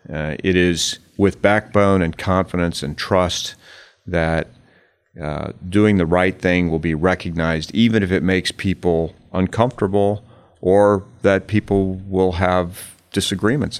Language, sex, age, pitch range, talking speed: English, male, 40-59, 85-100 Hz, 130 wpm